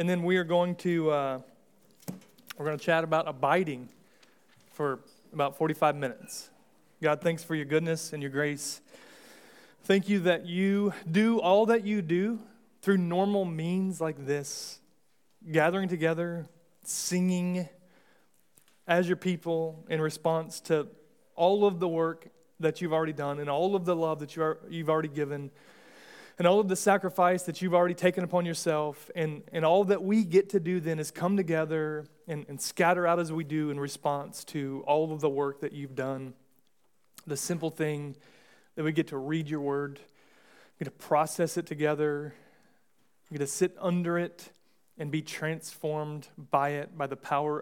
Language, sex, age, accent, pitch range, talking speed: English, male, 30-49, American, 150-180 Hz, 170 wpm